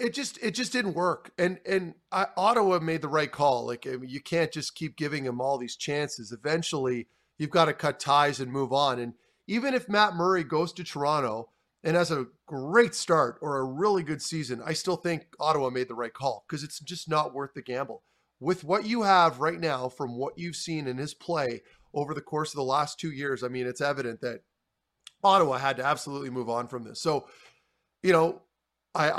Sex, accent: male, American